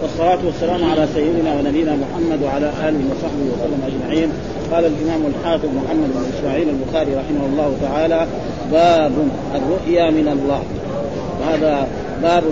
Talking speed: 130 wpm